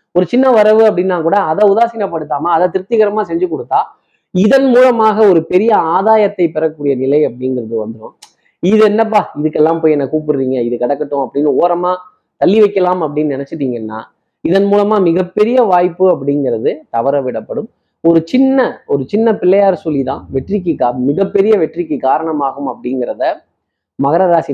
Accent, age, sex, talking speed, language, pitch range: native, 20-39, male, 130 wpm, Tamil, 135-185 Hz